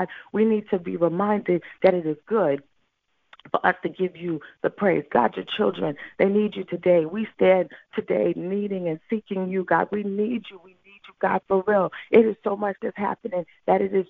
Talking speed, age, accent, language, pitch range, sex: 200 wpm, 40-59, American, English, 185-215 Hz, female